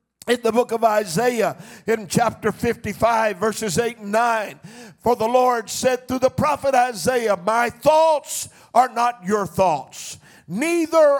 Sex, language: male, English